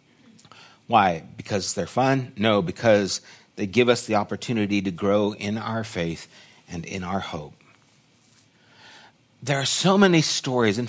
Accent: American